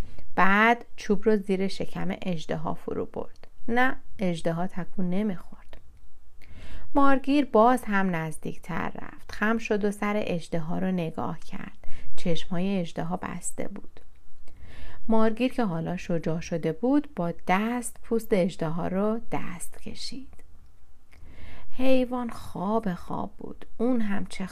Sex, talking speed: female, 130 wpm